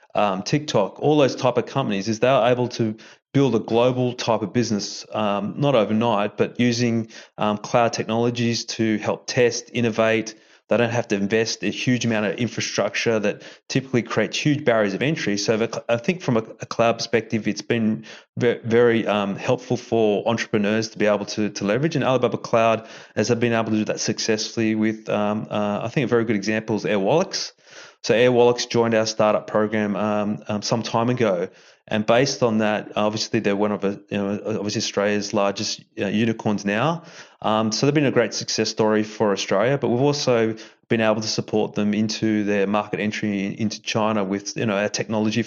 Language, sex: English, male